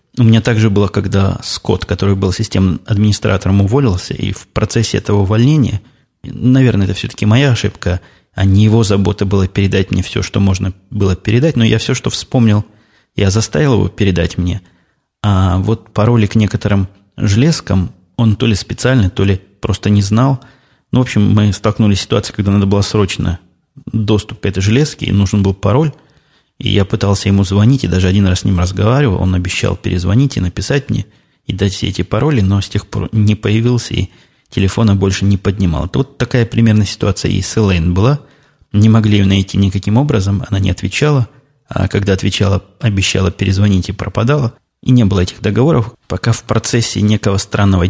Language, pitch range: Russian, 95-115 Hz